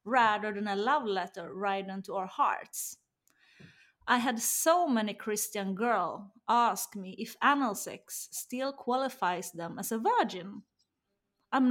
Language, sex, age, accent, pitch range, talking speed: Swedish, female, 30-49, native, 205-270 Hz, 140 wpm